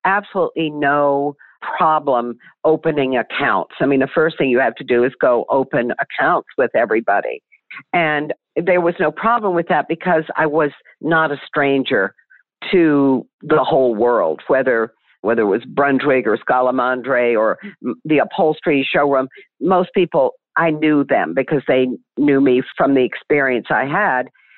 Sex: female